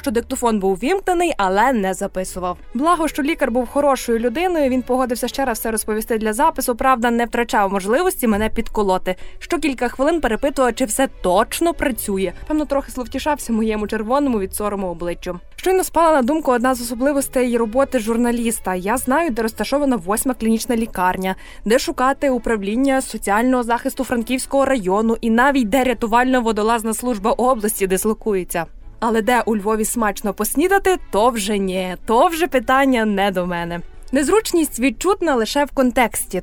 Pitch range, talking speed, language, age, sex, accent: 215-275 Hz, 155 wpm, Ukrainian, 20-39, female, native